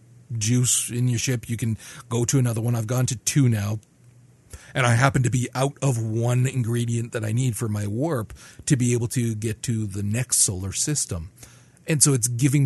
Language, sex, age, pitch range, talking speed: English, male, 40-59, 110-130 Hz, 210 wpm